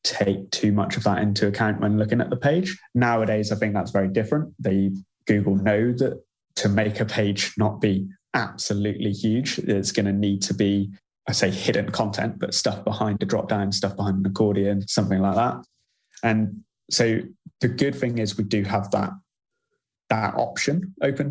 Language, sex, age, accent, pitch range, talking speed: English, male, 20-39, British, 100-125 Hz, 185 wpm